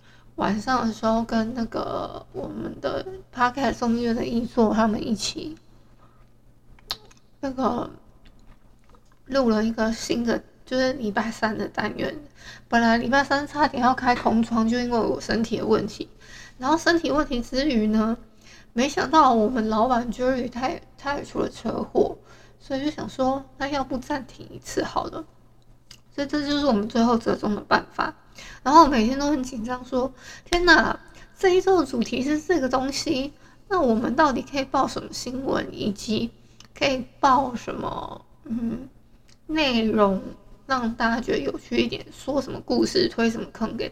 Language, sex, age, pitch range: Chinese, female, 20-39, 230-275 Hz